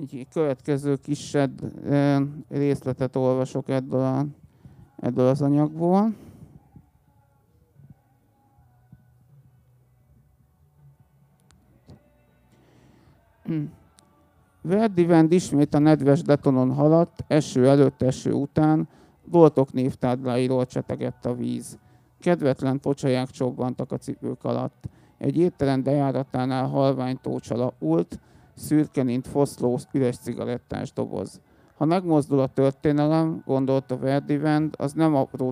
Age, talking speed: 50-69, 85 wpm